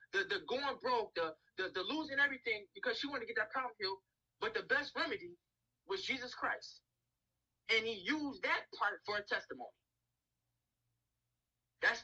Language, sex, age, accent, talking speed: English, male, 20-39, American, 165 wpm